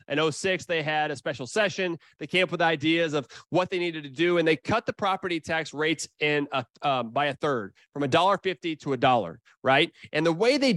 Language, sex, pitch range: English, male, 155-205 Hz